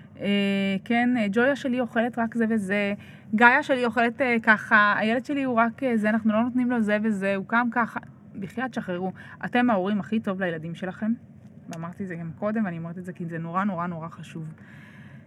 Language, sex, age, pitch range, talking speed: Hebrew, female, 20-39, 185-230 Hz, 195 wpm